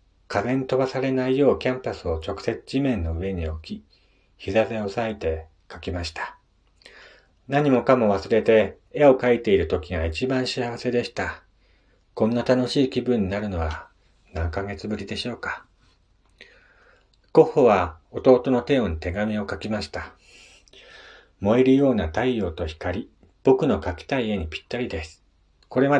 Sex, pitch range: male, 95-125 Hz